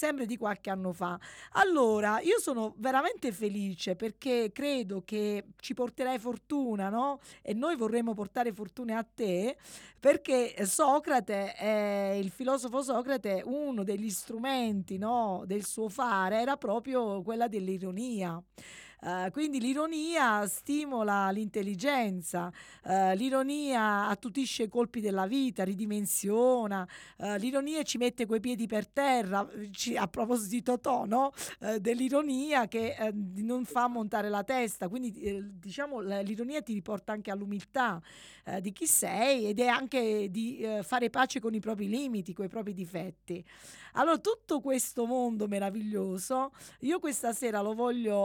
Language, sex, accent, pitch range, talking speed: Italian, female, native, 200-255 Hz, 140 wpm